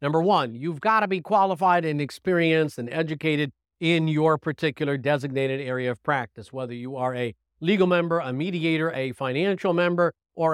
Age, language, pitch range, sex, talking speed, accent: 50-69, English, 140-195 Hz, male, 170 wpm, American